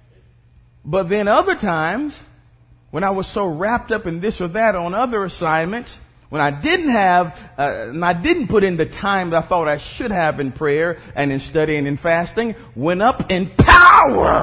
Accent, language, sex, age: American, English, male, 40-59